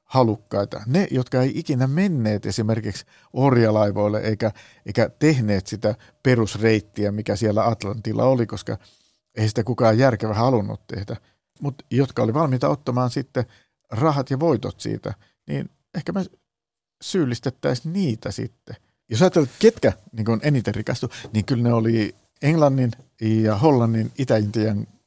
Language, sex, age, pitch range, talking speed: Finnish, male, 50-69, 105-135 Hz, 135 wpm